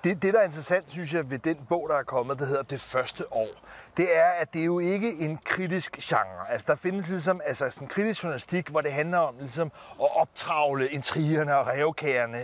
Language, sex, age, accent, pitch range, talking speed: Danish, male, 30-49, native, 140-180 Hz, 220 wpm